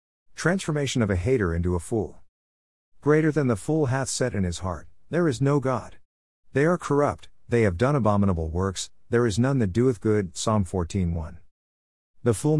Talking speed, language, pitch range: 180 wpm, English, 85-120 Hz